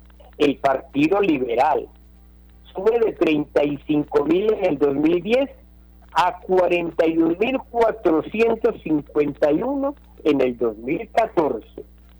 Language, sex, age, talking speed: Spanish, male, 50-69, 75 wpm